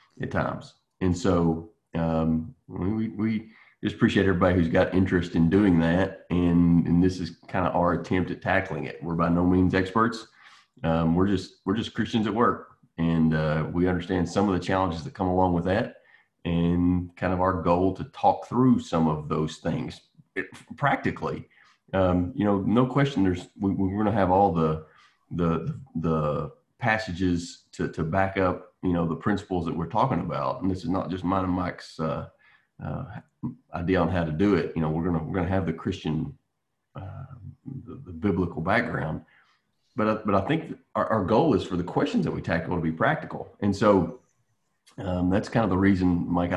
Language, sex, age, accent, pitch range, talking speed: English, male, 30-49, American, 85-100 Hz, 195 wpm